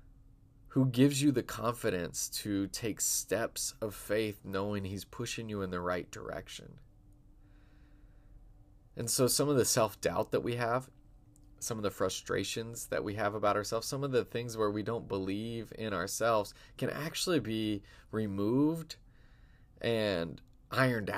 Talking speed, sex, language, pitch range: 145 wpm, male, English, 105-130 Hz